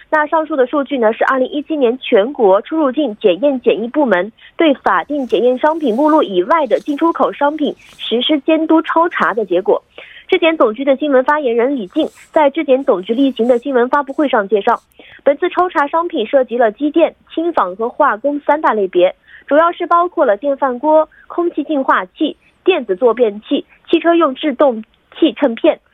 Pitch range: 240-310 Hz